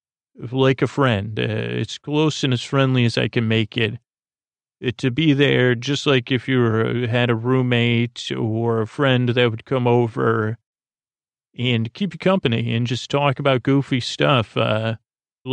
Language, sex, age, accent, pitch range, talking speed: English, male, 40-59, American, 115-135 Hz, 170 wpm